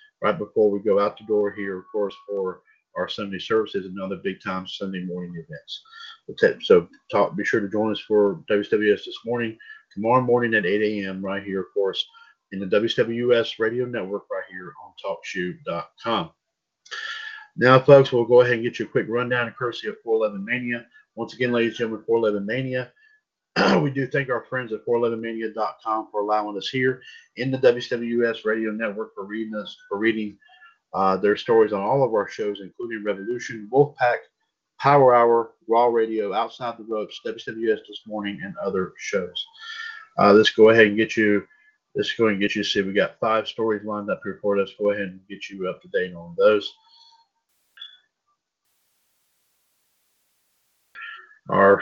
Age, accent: 50-69, American